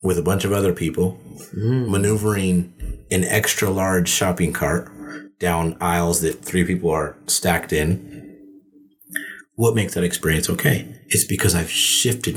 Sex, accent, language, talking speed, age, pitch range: male, American, English, 140 wpm, 30-49, 90-115 Hz